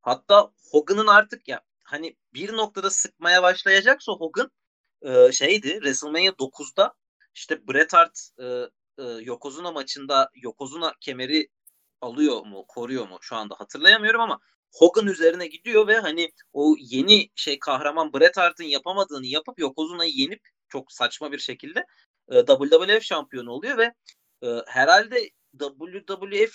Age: 30-49